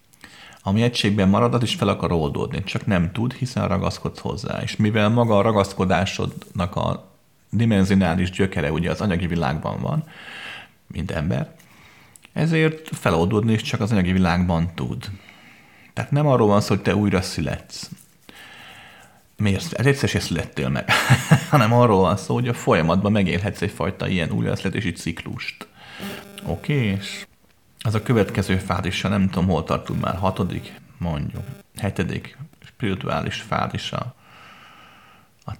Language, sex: Hungarian, male